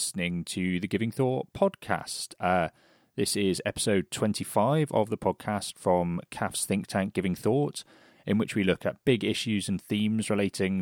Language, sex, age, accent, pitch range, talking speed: English, male, 30-49, British, 90-110 Hz, 170 wpm